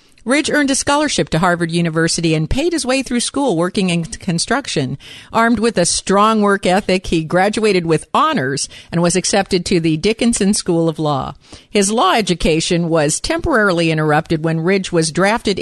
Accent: American